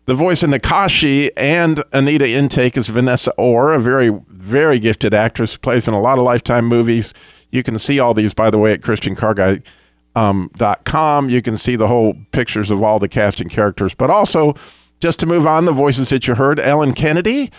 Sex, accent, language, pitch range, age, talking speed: male, American, English, 105-140 Hz, 50-69, 195 wpm